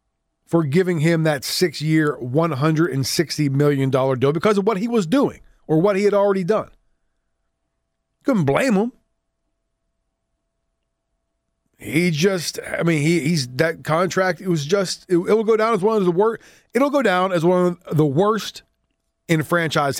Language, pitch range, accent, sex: English, 150-215 Hz, American, male